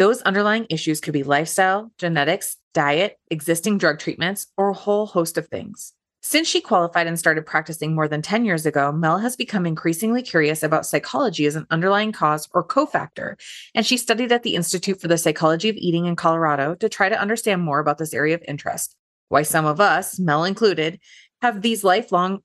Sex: female